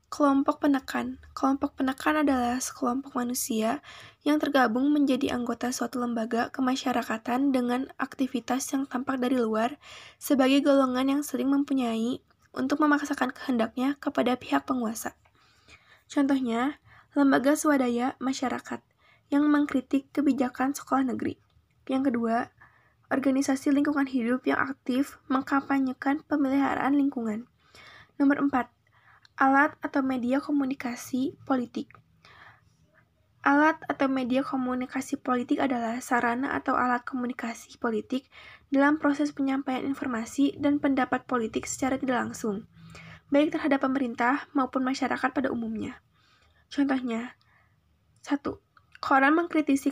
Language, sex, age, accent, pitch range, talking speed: Indonesian, female, 20-39, native, 250-280 Hz, 105 wpm